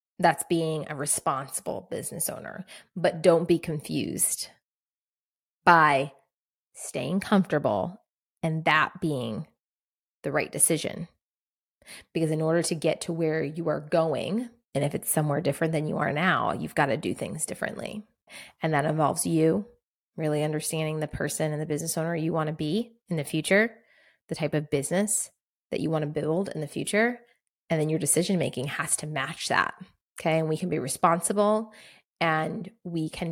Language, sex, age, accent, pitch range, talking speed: English, female, 20-39, American, 155-190 Hz, 165 wpm